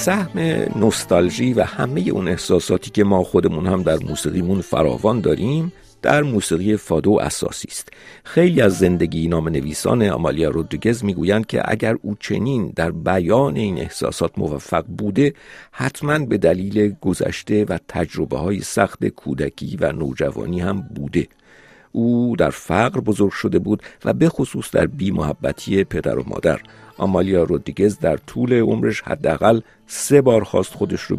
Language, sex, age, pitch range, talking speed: Persian, male, 50-69, 95-115 Hz, 145 wpm